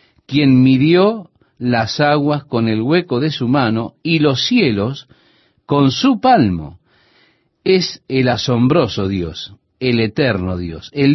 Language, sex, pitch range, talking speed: Spanish, male, 115-170 Hz, 130 wpm